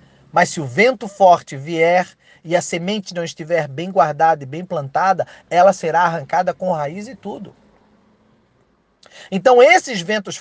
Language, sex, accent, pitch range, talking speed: Portuguese, male, Brazilian, 175-245 Hz, 150 wpm